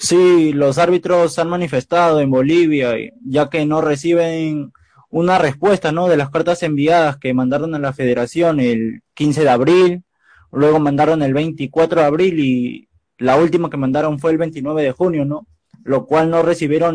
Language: Spanish